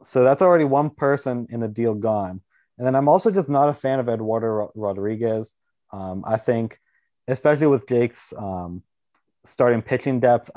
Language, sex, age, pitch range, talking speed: English, male, 20-39, 105-125 Hz, 170 wpm